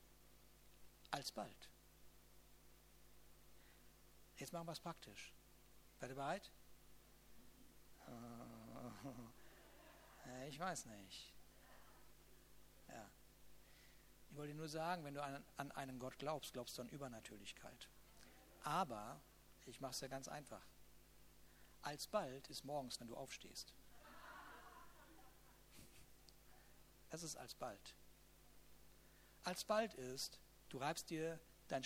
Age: 60-79